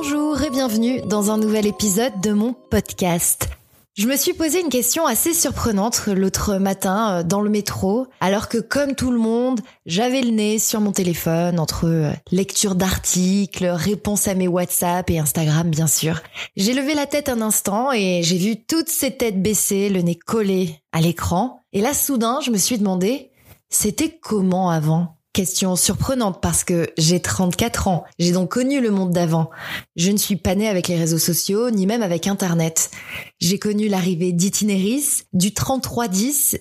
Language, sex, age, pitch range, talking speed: French, female, 20-39, 180-230 Hz, 175 wpm